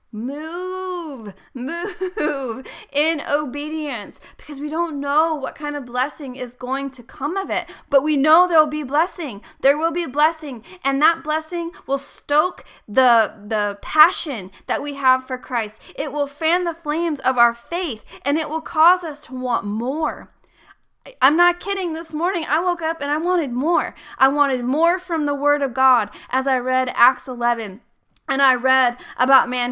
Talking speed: 180 wpm